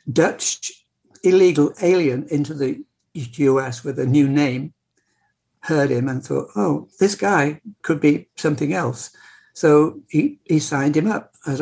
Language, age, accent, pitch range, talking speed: English, 60-79, British, 140-175 Hz, 145 wpm